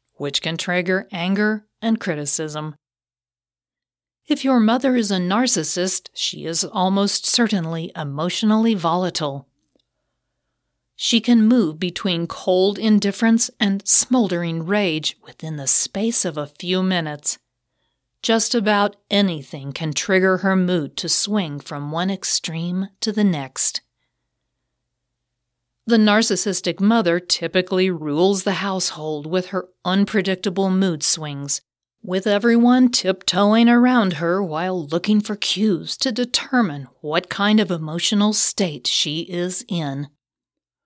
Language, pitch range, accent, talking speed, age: English, 160-200 Hz, American, 120 wpm, 40-59